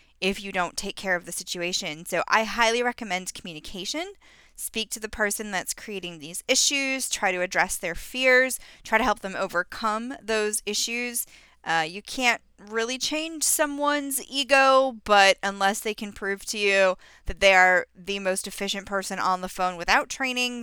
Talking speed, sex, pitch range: 170 wpm, female, 180-240 Hz